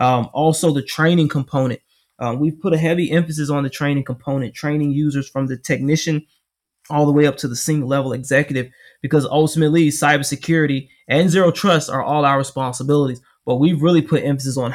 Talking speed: 190 wpm